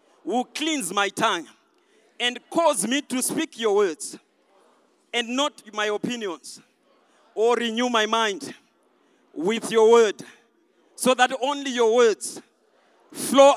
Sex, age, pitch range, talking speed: male, 40-59, 230-295 Hz, 125 wpm